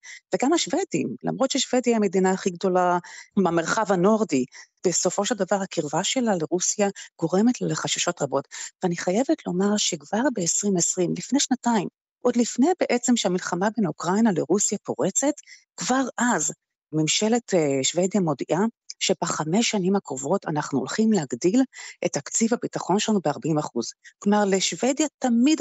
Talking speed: 130 wpm